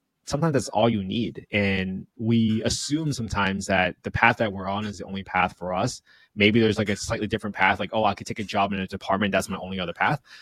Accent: American